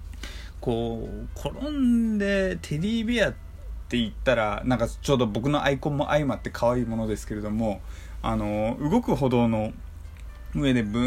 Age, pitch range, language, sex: 20-39, 100-140 Hz, Japanese, male